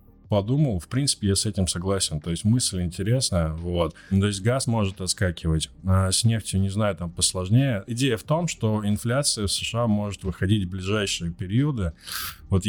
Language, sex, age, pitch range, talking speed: Russian, male, 20-39, 85-105 Hz, 175 wpm